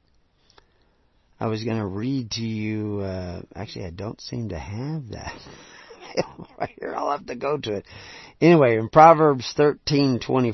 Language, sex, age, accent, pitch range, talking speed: English, male, 50-69, American, 100-130 Hz, 160 wpm